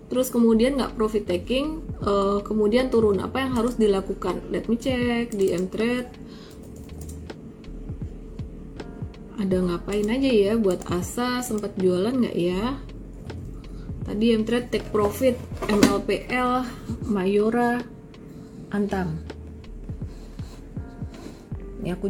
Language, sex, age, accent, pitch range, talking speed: Indonesian, female, 20-39, native, 200-240 Hz, 100 wpm